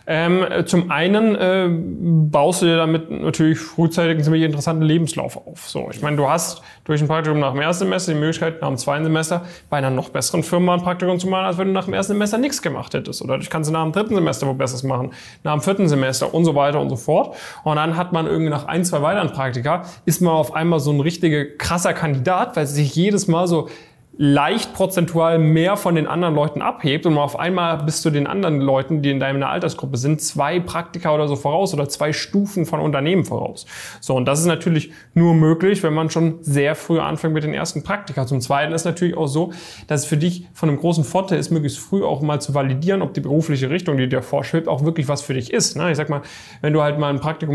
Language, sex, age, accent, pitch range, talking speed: German, male, 10-29, German, 145-170 Hz, 240 wpm